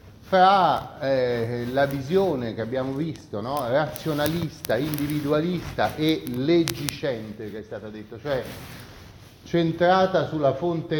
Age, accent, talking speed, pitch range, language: 30-49, native, 110 wpm, 110-155 Hz, Italian